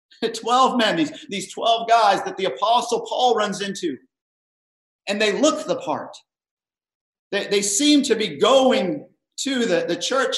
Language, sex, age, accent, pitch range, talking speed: English, male, 50-69, American, 190-265 Hz, 155 wpm